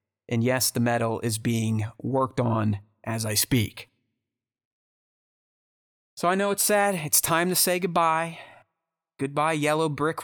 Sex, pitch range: male, 120-165 Hz